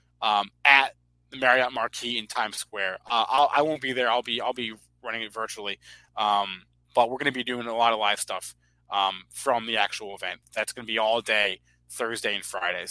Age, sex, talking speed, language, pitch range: 20-39, male, 220 wpm, English, 90-130 Hz